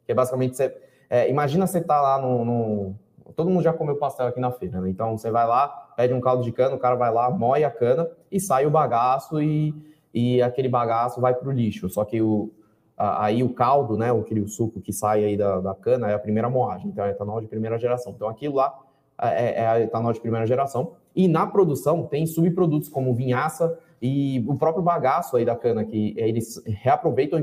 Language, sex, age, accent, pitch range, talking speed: Portuguese, male, 20-39, Brazilian, 115-155 Hz, 220 wpm